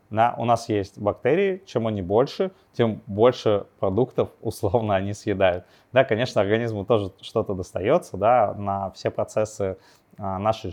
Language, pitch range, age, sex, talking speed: Russian, 95-115 Hz, 20-39, male, 130 wpm